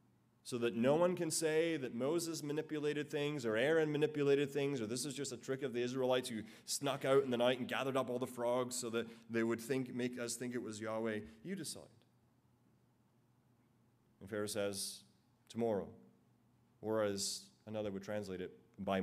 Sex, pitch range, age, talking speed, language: male, 100-135 Hz, 30-49, 185 wpm, English